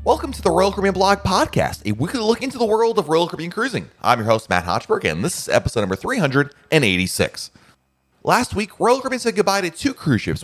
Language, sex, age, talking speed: English, male, 30-49, 220 wpm